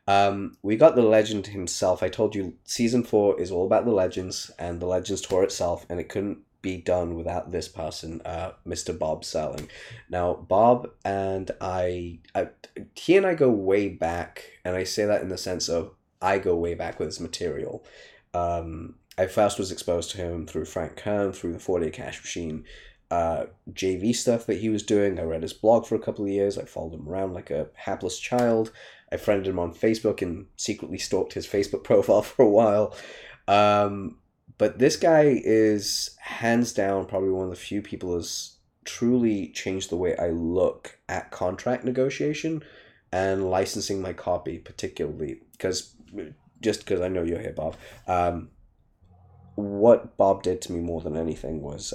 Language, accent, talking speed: English, British, 180 wpm